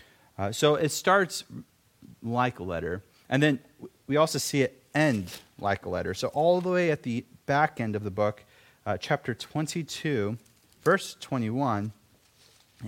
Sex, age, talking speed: male, 30-49, 155 wpm